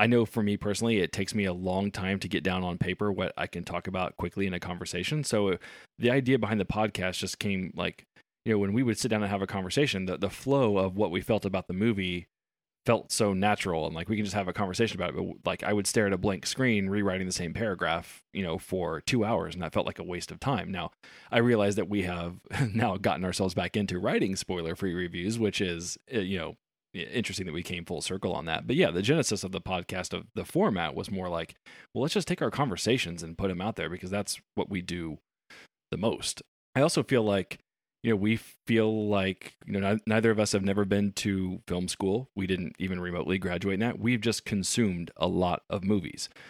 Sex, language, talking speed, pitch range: male, English, 240 wpm, 90-110 Hz